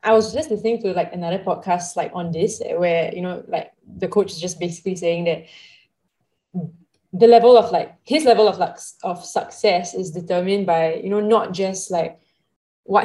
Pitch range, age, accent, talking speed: 170-195 Hz, 20-39, Malaysian, 190 wpm